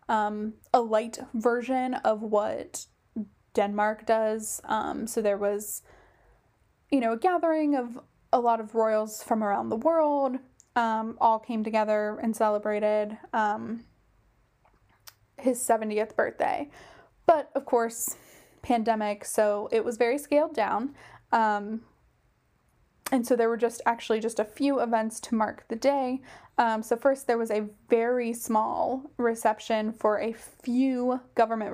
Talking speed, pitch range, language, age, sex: 140 wpm, 210-240 Hz, English, 10-29, female